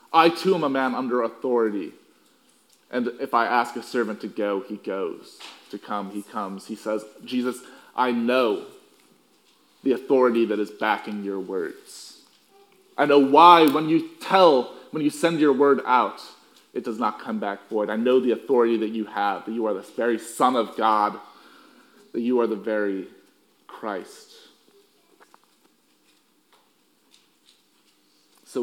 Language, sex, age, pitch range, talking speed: English, male, 30-49, 110-165 Hz, 155 wpm